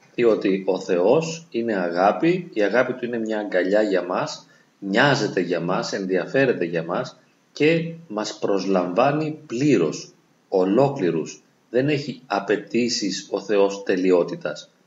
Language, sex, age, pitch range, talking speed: Greek, male, 40-59, 105-165 Hz, 120 wpm